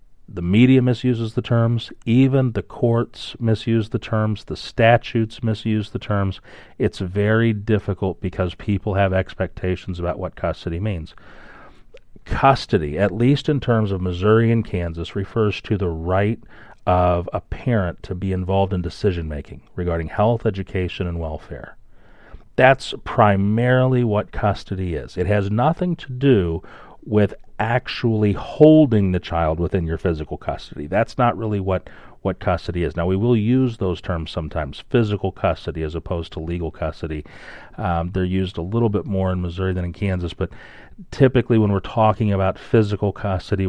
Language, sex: English, male